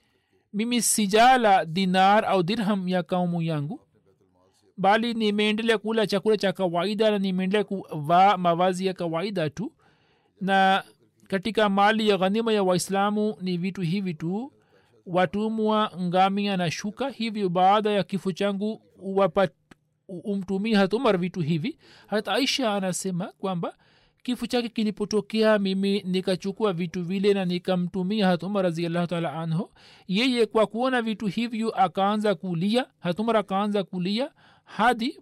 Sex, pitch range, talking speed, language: male, 185-220 Hz, 130 wpm, Swahili